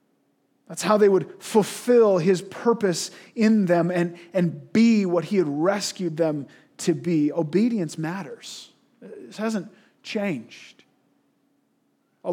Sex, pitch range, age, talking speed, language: male, 170-210 Hz, 30-49, 120 wpm, English